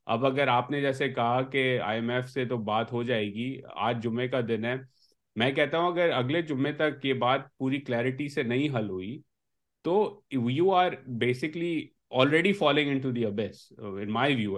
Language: English